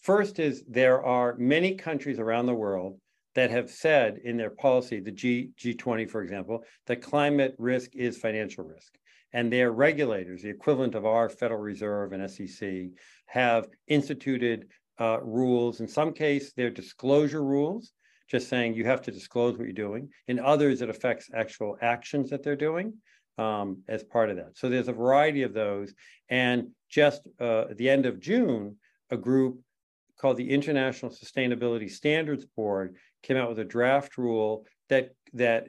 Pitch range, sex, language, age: 115-140 Hz, male, English, 50-69